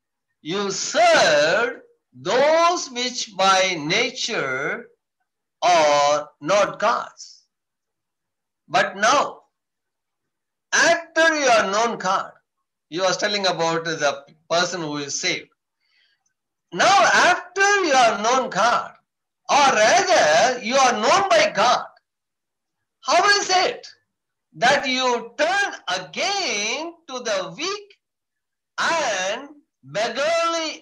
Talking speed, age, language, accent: 95 wpm, 60-79, English, Indian